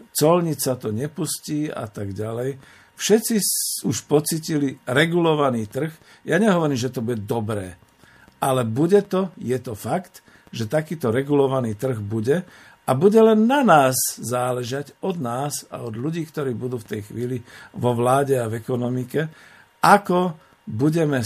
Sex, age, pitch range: male, 50-69, 120-150 Hz